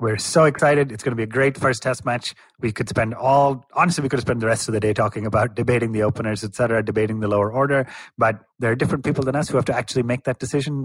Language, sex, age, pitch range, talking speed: English, male, 30-49, 110-135 Hz, 275 wpm